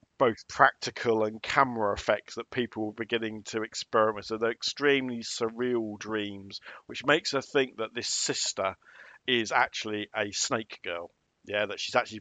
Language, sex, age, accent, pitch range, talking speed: English, male, 40-59, British, 105-125 Hz, 155 wpm